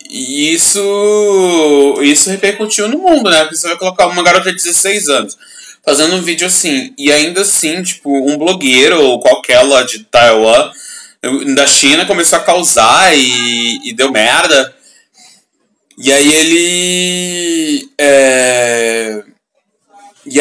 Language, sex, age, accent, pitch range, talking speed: Portuguese, male, 20-39, Brazilian, 130-200 Hz, 130 wpm